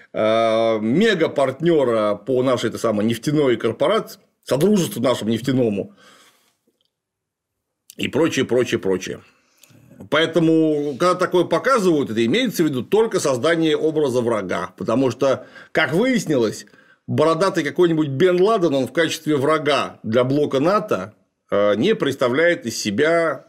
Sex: male